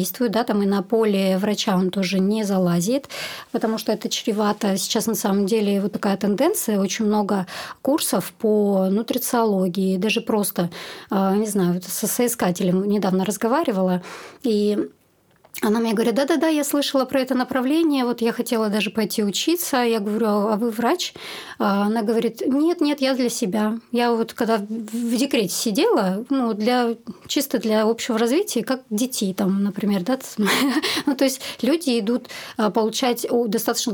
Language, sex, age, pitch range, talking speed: Russian, male, 20-39, 200-240 Hz, 150 wpm